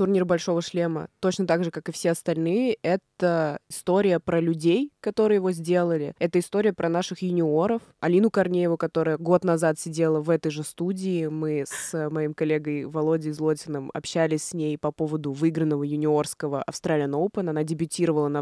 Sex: female